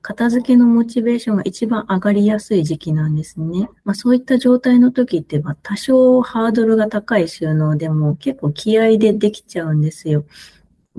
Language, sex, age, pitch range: Japanese, female, 30-49, 160-225 Hz